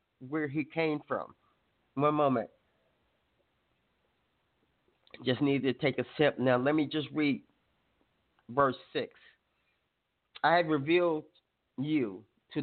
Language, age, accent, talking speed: English, 40-59, American, 115 wpm